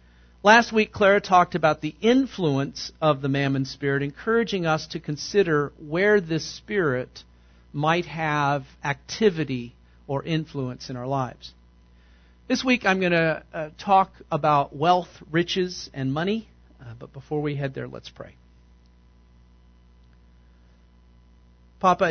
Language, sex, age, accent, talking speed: English, male, 50-69, American, 125 wpm